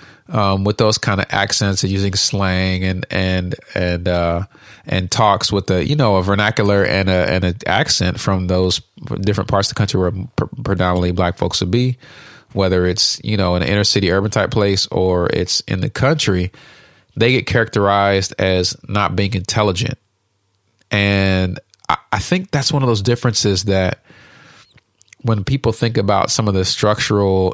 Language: English